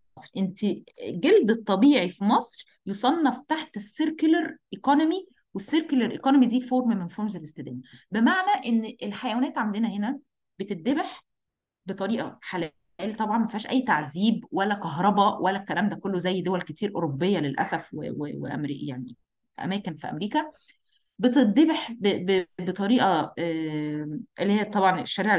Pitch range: 185-265 Hz